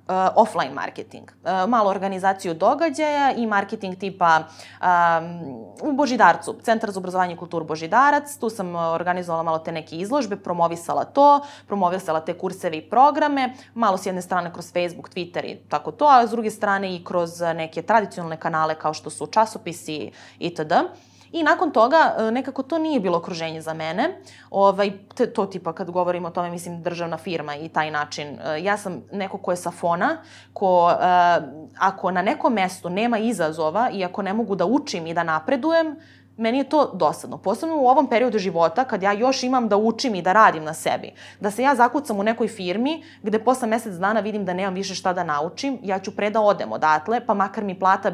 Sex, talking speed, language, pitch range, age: female, 190 wpm, English, 170-230 Hz, 20-39